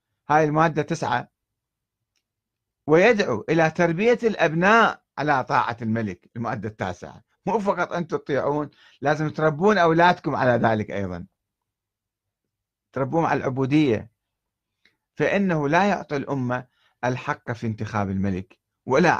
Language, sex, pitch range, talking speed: Arabic, male, 115-160 Hz, 105 wpm